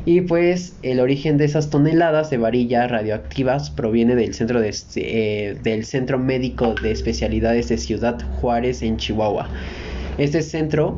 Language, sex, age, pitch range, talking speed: Spanish, male, 20-39, 110-120 Hz, 130 wpm